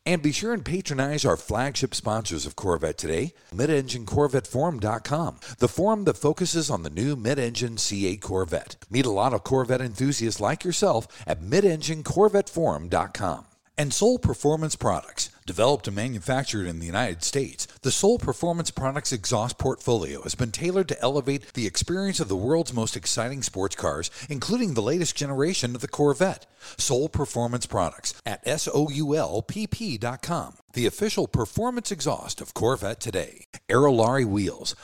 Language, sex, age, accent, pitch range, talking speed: English, male, 50-69, American, 110-155 Hz, 145 wpm